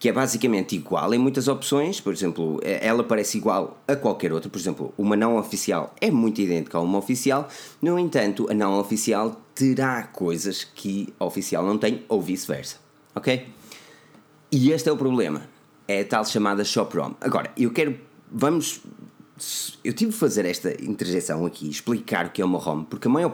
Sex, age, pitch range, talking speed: male, 20-39, 95-135 Hz, 185 wpm